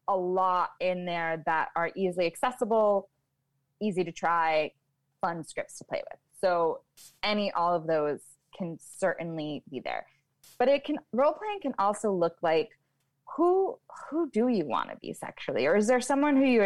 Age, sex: 20-39, female